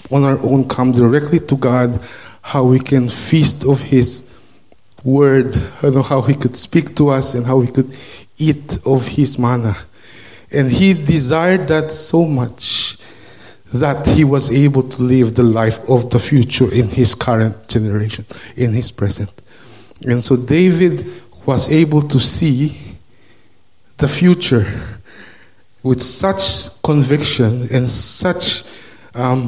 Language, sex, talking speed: English, male, 135 wpm